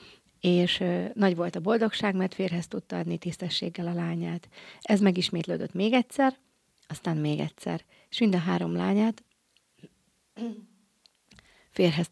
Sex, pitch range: female, 170-205 Hz